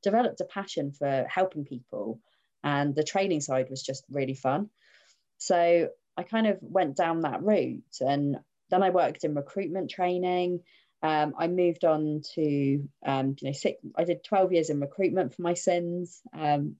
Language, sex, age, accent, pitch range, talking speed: English, female, 30-49, British, 150-180 Hz, 170 wpm